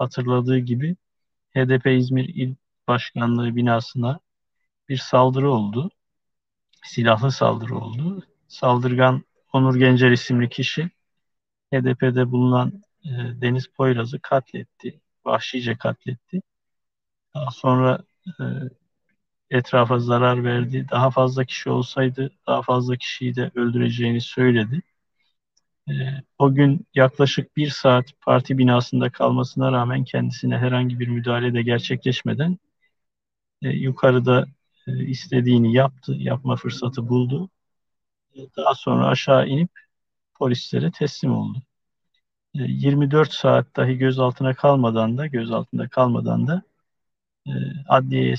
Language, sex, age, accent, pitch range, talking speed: Turkish, male, 50-69, native, 120-140 Hz, 95 wpm